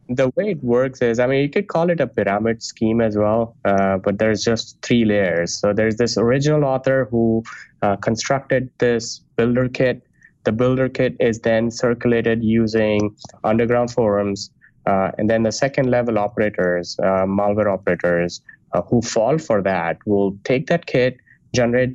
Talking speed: 170 wpm